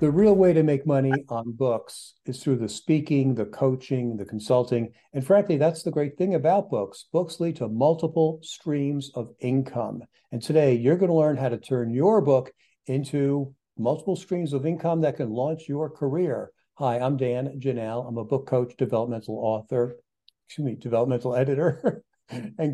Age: 60-79